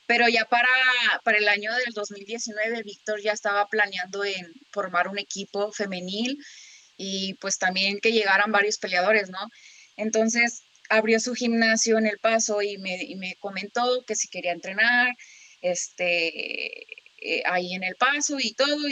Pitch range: 200-240 Hz